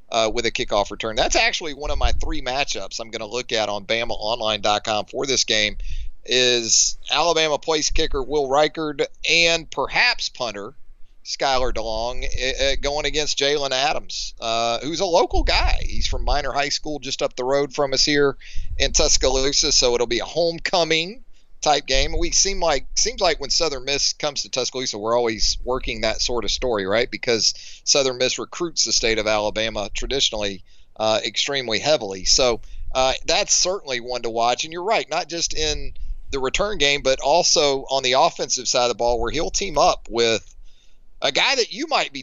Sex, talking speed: male, 185 wpm